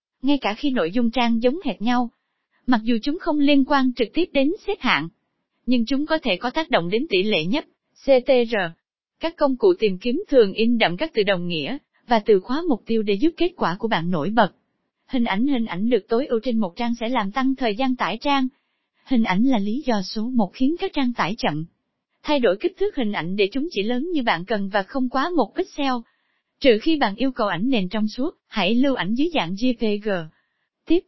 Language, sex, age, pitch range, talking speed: Vietnamese, female, 20-39, 220-280 Hz, 230 wpm